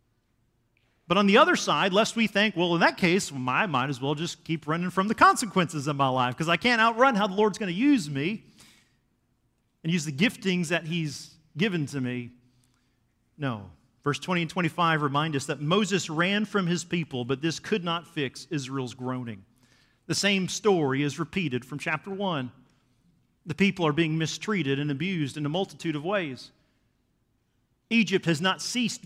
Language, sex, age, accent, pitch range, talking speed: English, male, 40-59, American, 135-195 Hz, 185 wpm